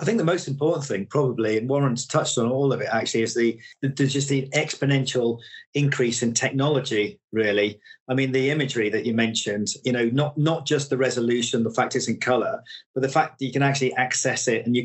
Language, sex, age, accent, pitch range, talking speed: English, male, 40-59, British, 115-135 Hz, 220 wpm